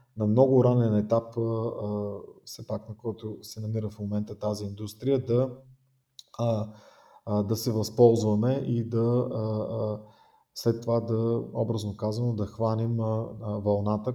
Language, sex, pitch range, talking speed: Bulgarian, male, 105-125 Hz, 120 wpm